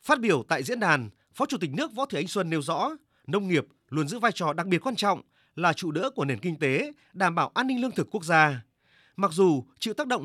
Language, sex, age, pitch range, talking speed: Vietnamese, male, 30-49, 150-220 Hz, 265 wpm